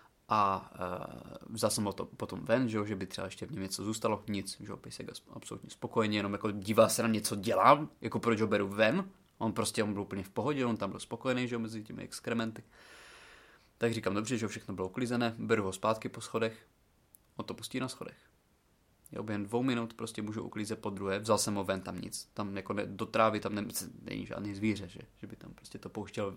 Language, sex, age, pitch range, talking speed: Czech, male, 20-39, 100-115 Hz, 220 wpm